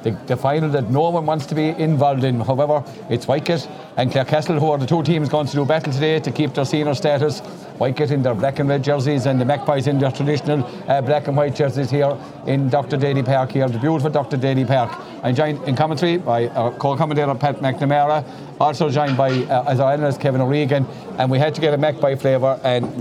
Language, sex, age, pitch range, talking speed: English, male, 50-69, 135-155 Hz, 230 wpm